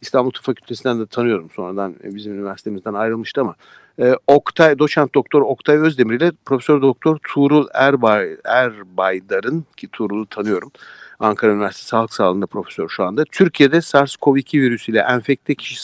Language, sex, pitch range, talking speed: Turkish, male, 110-145 Hz, 140 wpm